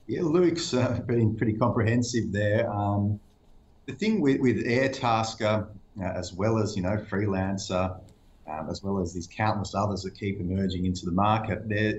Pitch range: 90-110 Hz